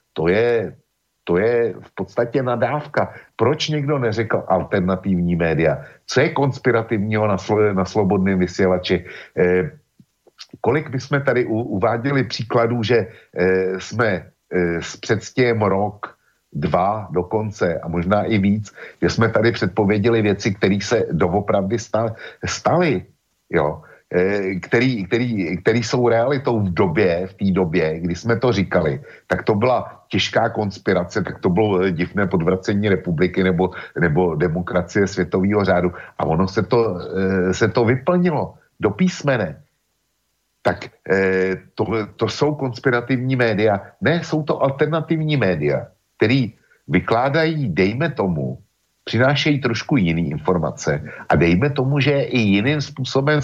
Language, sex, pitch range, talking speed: Slovak, male, 95-135 Hz, 125 wpm